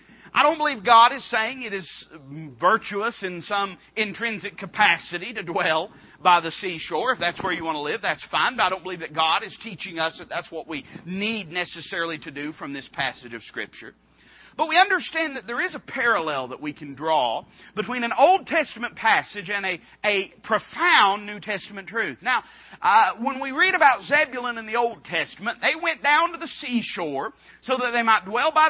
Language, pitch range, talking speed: English, 200-275 Hz, 200 wpm